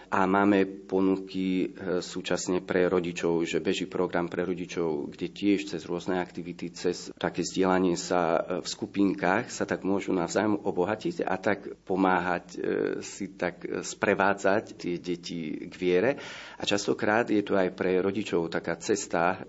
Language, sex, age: Slovak, male, 40-59